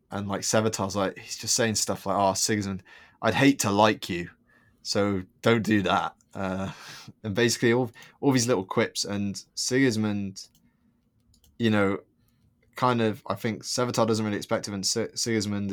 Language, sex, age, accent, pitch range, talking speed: English, male, 20-39, British, 95-115 Hz, 170 wpm